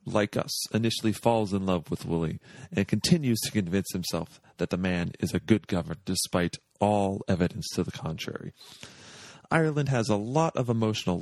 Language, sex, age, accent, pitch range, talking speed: English, male, 40-59, American, 100-140 Hz, 170 wpm